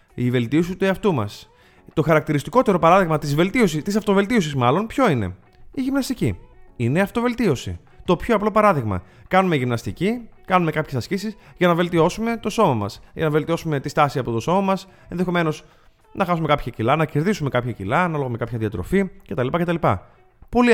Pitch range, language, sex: 125-195 Hz, Greek, male